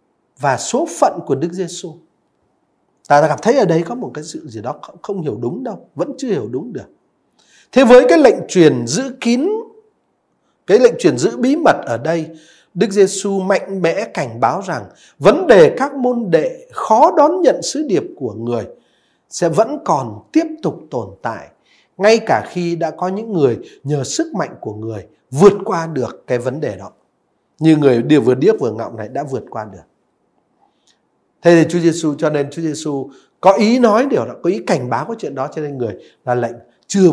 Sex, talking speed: male, 205 wpm